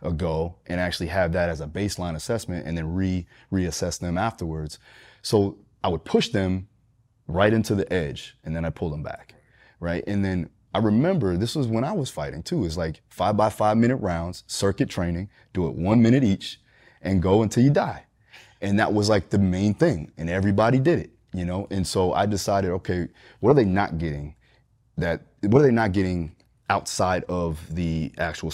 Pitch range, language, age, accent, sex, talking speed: 85-105 Hz, English, 30-49, American, male, 200 wpm